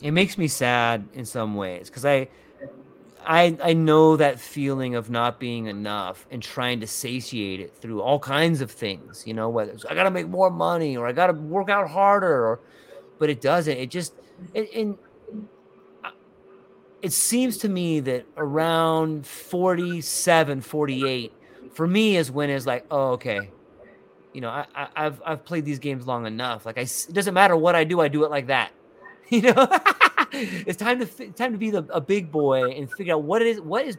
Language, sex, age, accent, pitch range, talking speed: English, male, 30-49, American, 130-185 Hz, 200 wpm